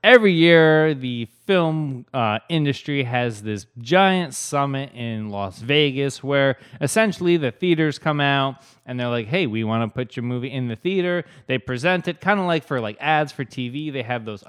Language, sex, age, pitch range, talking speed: English, male, 20-39, 125-170 Hz, 190 wpm